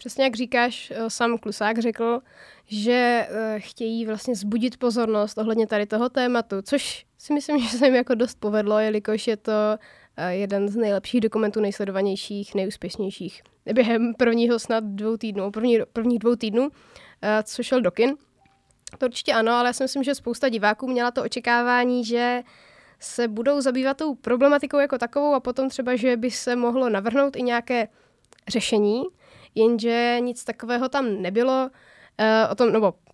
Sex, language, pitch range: female, Czech, 215-250 Hz